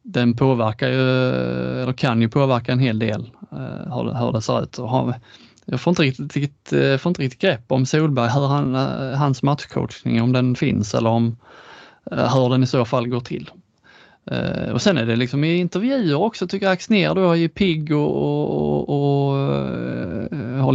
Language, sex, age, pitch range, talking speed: Swedish, male, 20-39, 115-150 Hz, 155 wpm